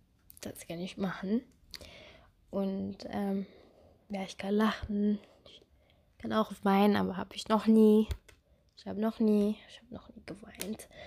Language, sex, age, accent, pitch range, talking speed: Croatian, female, 20-39, German, 190-215 Hz, 150 wpm